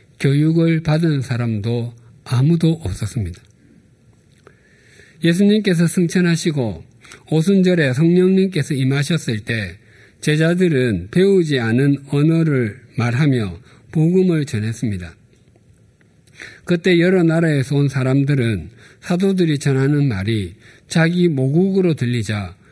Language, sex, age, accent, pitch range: Korean, male, 50-69, native, 120-170 Hz